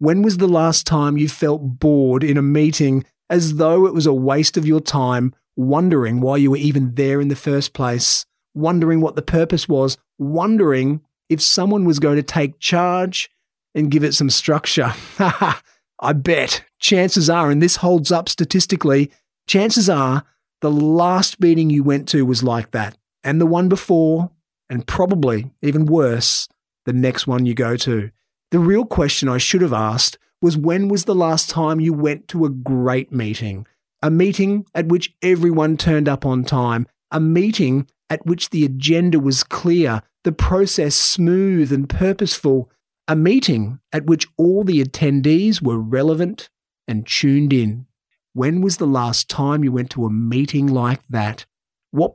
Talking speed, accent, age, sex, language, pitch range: 170 wpm, Australian, 30-49, male, English, 130-170 Hz